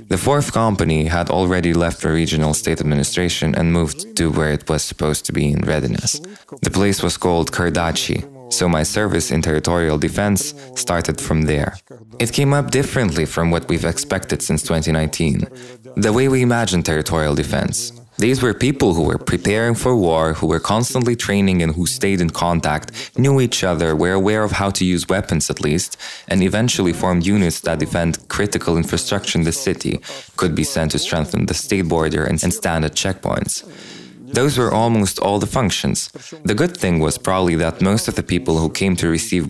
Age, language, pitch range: 20-39, Ukrainian, 80-115 Hz